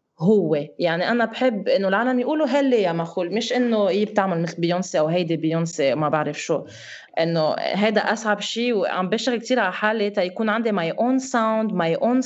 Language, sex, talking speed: Arabic, female, 190 wpm